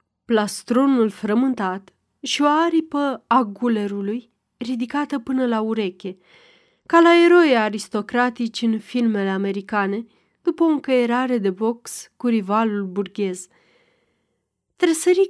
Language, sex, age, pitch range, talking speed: Romanian, female, 30-49, 200-265 Hz, 100 wpm